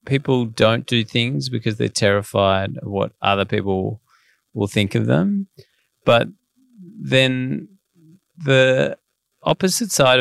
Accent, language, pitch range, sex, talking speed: Australian, English, 100-130 Hz, male, 120 wpm